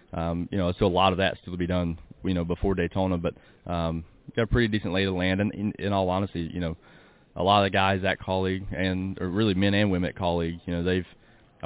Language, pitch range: English, 85-105 Hz